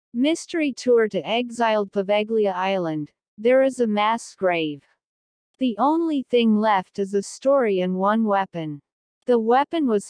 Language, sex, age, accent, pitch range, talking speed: Indonesian, female, 50-69, American, 190-245 Hz, 145 wpm